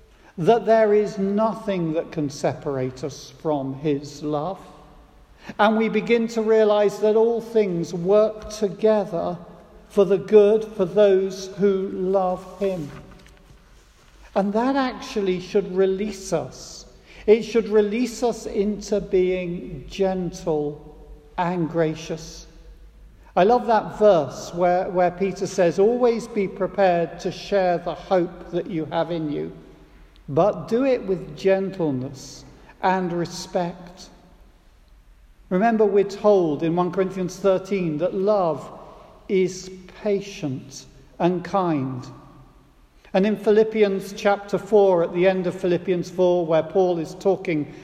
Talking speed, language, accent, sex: 125 wpm, English, British, male